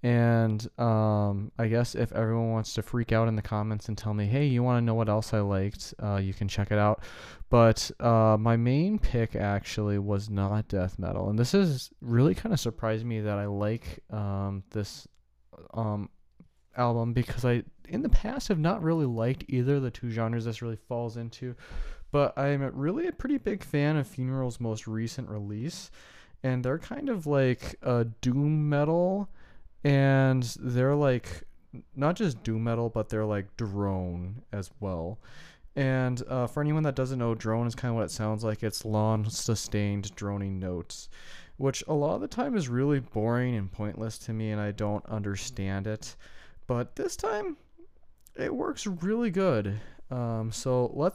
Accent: American